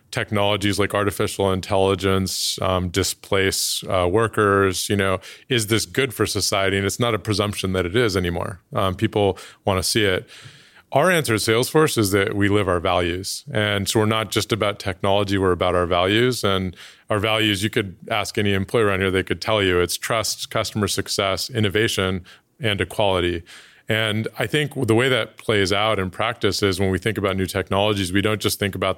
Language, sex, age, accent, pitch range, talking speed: English, male, 30-49, American, 95-110 Hz, 195 wpm